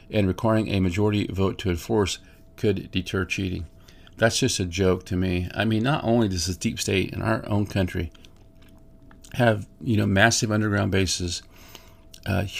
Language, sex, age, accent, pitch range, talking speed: English, male, 50-69, American, 90-110 Hz, 165 wpm